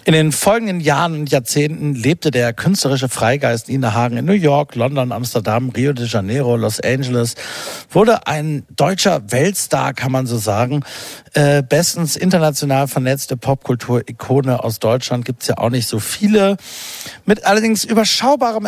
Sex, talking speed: male, 150 wpm